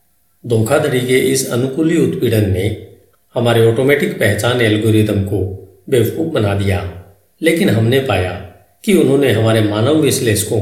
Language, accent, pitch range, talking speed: Hindi, native, 100-125 Hz, 125 wpm